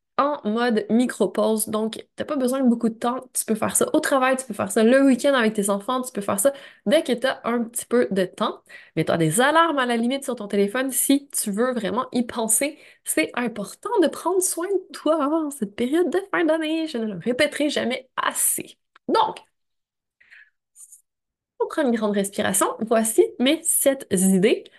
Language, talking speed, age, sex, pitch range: French, 205 wpm, 20-39, female, 215-295 Hz